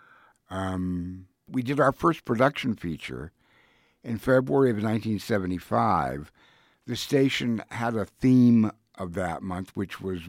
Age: 60-79